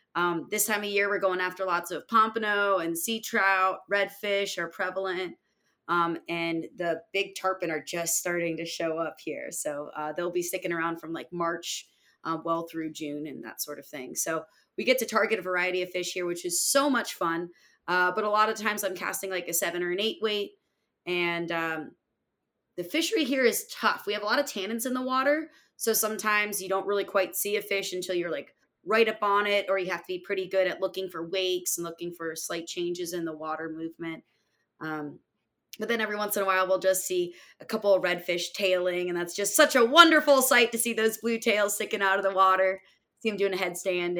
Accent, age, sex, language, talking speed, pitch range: American, 20-39, female, English, 225 wpm, 170-210 Hz